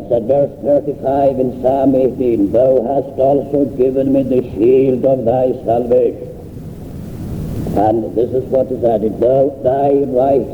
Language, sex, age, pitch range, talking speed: English, male, 60-79, 120-140 Hz, 140 wpm